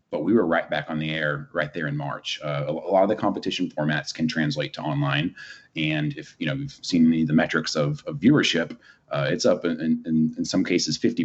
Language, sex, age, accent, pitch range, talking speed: English, male, 30-49, American, 75-95 Hz, 245 wpm